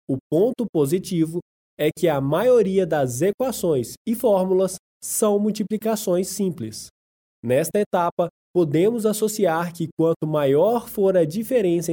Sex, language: male, Portuguese